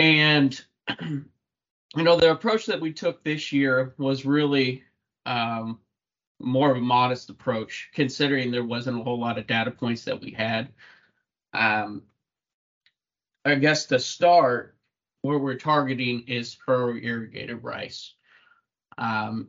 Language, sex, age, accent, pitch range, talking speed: English, male, 20-39, American, 115-135 Hz, 130 wpm